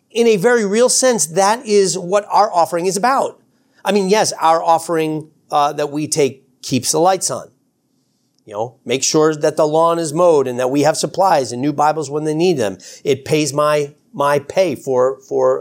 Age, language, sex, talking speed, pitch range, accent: 40-59, English, male, 205 wpm, 120-175 Hz, American